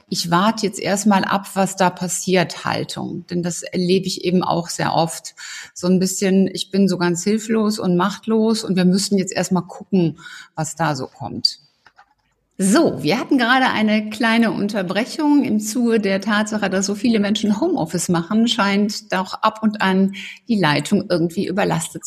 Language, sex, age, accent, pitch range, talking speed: German, female, 60-79, German, 180-220 Hz, 170 wpm